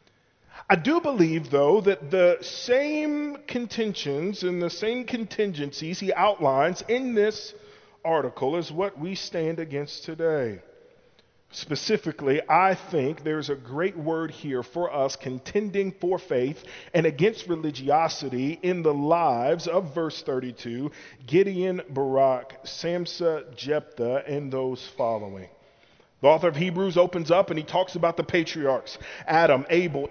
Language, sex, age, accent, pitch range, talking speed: English, male, 40-59, American, 145-195 Hz, 130 wpm